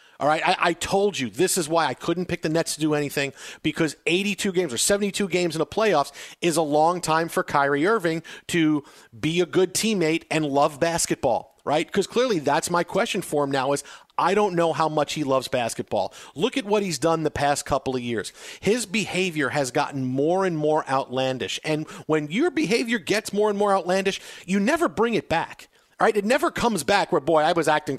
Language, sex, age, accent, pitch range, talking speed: English, male, 40-59, American, 150-195 Hz, 215 wpm